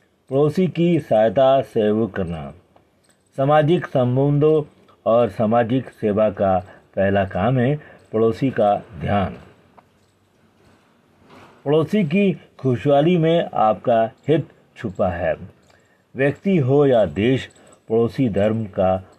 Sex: male